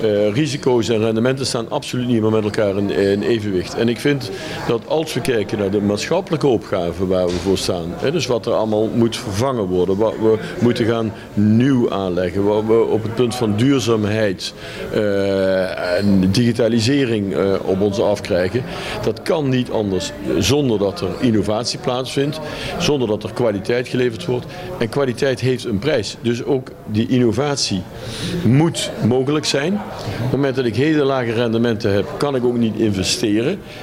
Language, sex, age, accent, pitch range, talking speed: Dutch, male, 50-69, Dutch, 105-130 Hz, 170 wpm